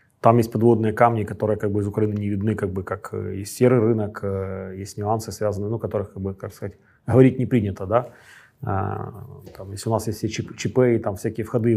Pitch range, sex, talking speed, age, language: 100-120 Hz, male, 215 wpm, 20-39, Ukrainian